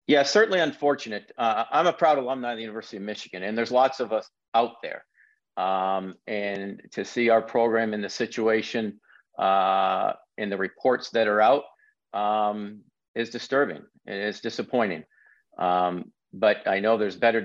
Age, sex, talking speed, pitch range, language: 50-69, male, 160 wpm, 105-125 Hz, English